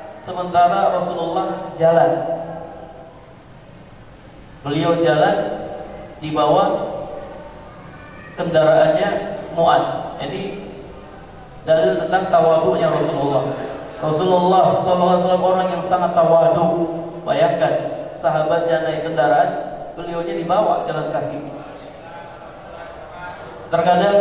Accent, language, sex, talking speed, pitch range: native, Indonesian, male, 75 wpm, 160-200 Hz